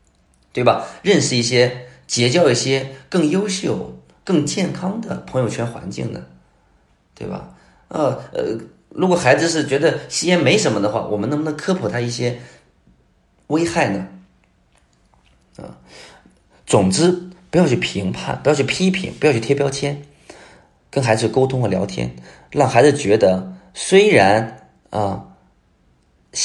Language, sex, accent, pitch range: Chinese, male, native, 100-160 Hz